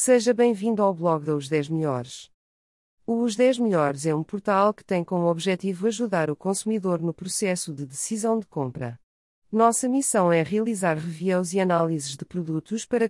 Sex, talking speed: female, 170 wpm